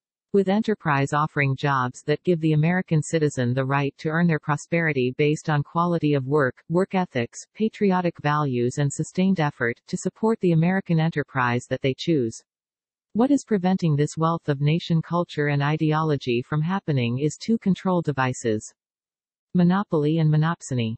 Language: English